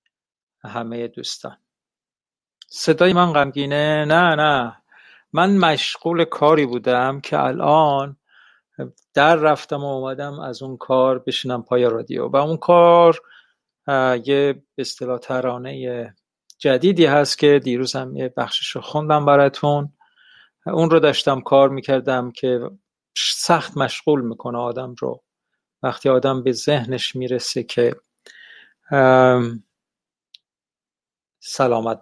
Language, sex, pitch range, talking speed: Persian, male, 130-165 Hz, 105 wpm